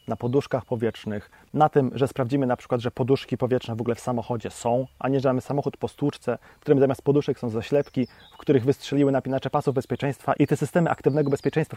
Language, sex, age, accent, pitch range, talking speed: Polish, male, 30-49, native, 130-170 Hz, 210 wpm